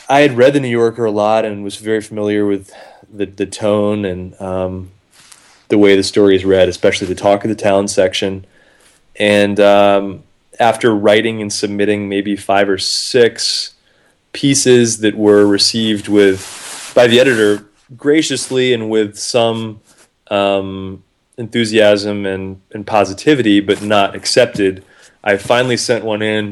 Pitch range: 95-105 Hz